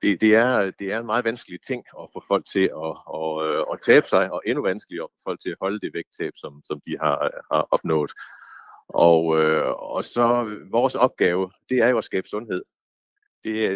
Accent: native